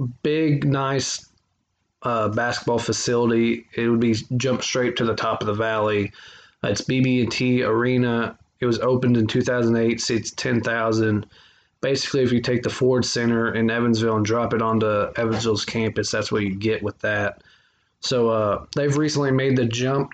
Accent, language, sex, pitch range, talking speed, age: American, English, male, 110-125 Hz, 165 wpm, 20-39